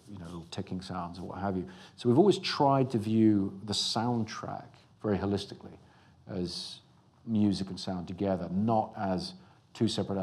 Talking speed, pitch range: 160 wpm, 95-110 Hz